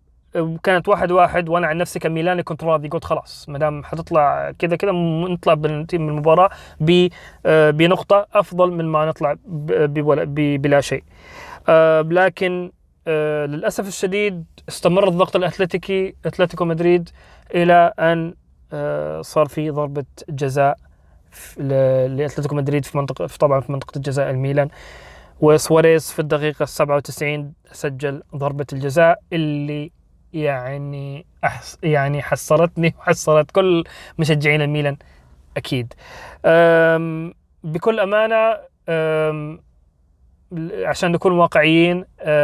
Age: 30-49